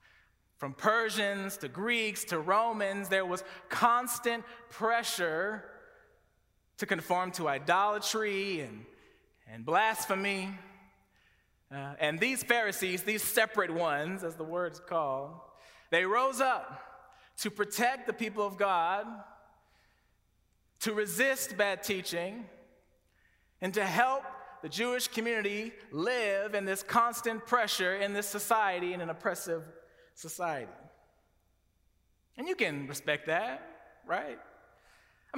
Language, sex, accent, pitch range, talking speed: English, male, American, 180-245 Hz, 115 wpm